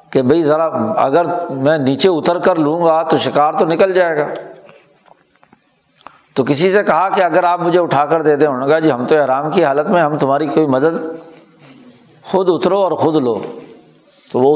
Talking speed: 195 wpm